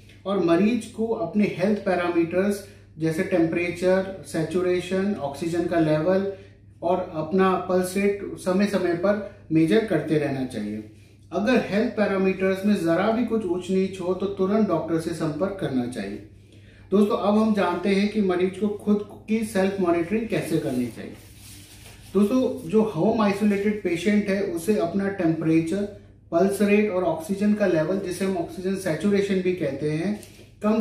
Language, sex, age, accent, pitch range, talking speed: Hindi, male, 30-49, native, 160-205 Hz, 150 wpm